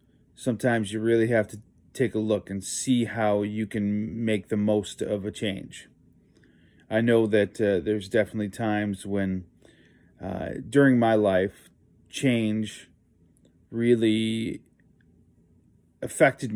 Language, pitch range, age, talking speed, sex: English, 90-110 Hz, 30-49, 125 wpm, male